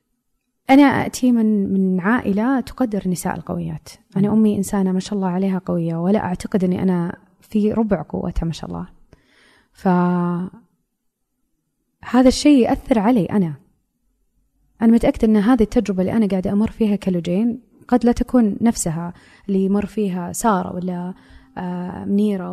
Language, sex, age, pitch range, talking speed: Arabic, female, 20-39, 180-225 Hz, 140 wpm